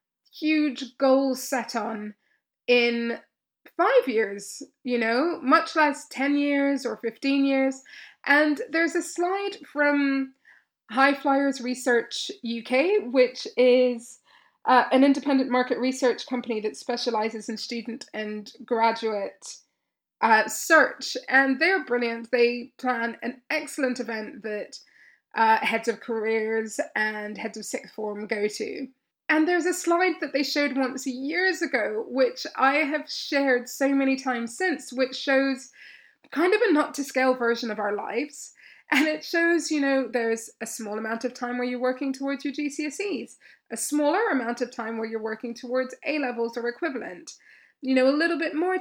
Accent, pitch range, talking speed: British, 235-295 Hz, 155 wpm